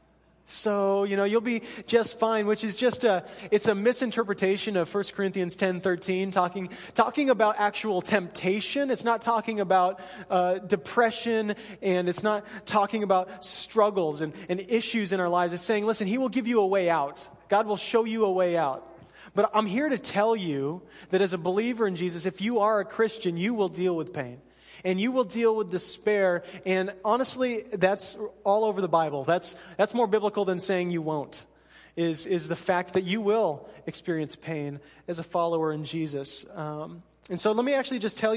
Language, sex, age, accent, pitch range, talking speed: English, male, 20-39, American, 180-215 Hz, 195 wpm